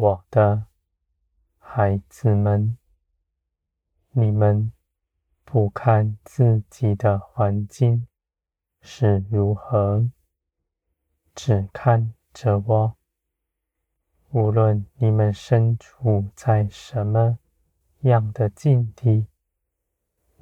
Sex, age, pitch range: male, 20-39, 85-115 Hz